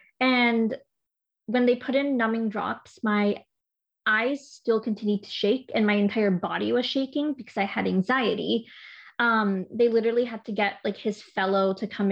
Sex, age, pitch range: female, 20-39, 210-255 Hz